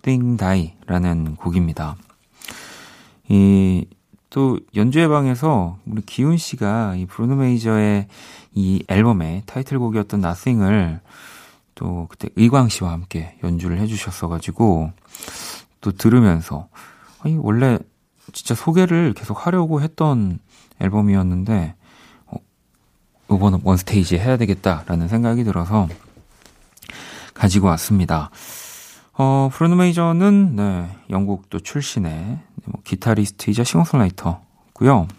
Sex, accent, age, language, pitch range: male, native, 40-59, Korean, 90-120 Hz